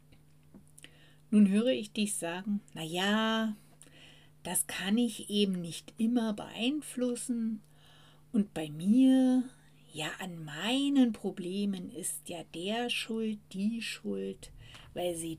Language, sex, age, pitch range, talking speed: German, female, 60-79, 145-210 Hz, 110 wpm